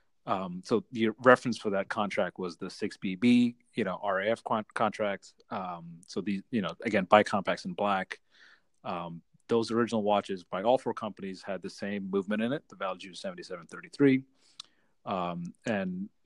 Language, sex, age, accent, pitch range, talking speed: English, male, 30-49, American, 90-120 Hz, 155 wpm